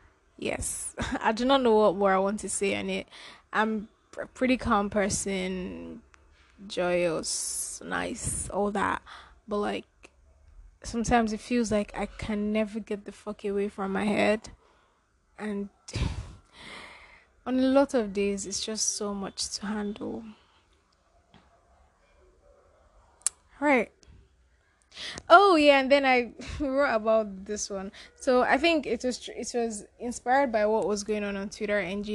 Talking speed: 145 wpm